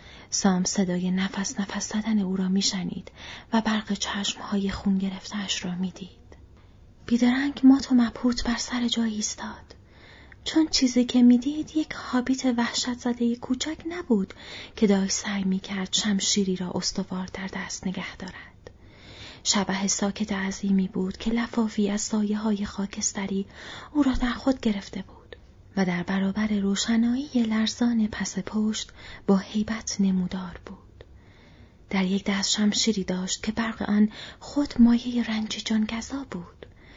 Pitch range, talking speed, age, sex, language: 190-225 Hz, 135 wpm, 30-49, female, Persian